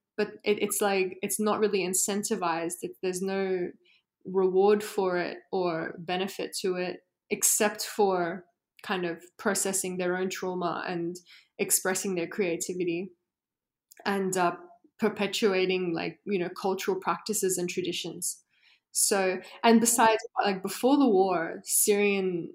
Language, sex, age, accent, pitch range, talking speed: English, female, 20-39, Australian, 180-205 Hz, 120 wpm